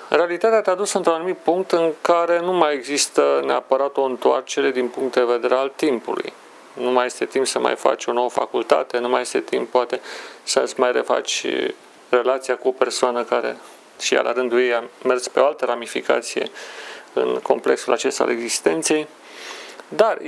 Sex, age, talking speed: male, 40-59, 180 wpm